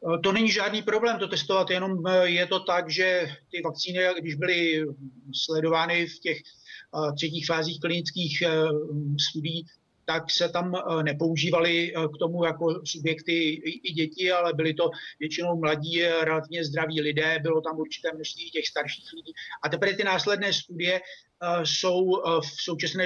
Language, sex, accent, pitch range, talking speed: Czech, male, native, 155-175 Hz, 145 wpm